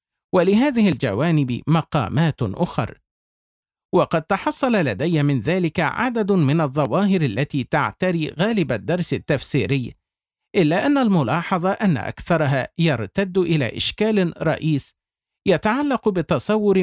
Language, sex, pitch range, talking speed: Arabic, male, 140-180 Hz, 100 wpm